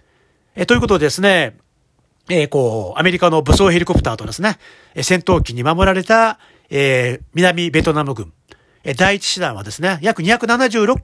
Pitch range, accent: 145-210 Hz, native